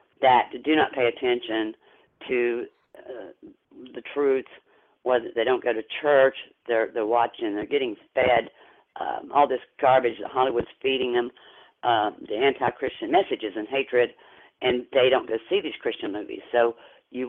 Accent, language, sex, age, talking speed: American, English, female, 50-69, 155 wpm